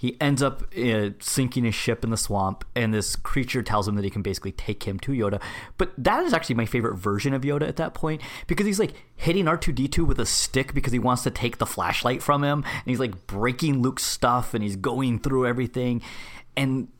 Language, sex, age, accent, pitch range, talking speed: English, male, 30-49, American, 105-125 Hz, 225 wpm